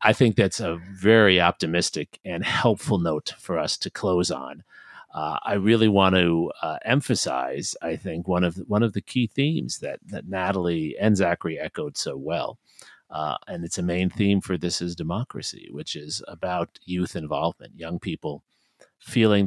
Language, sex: English, male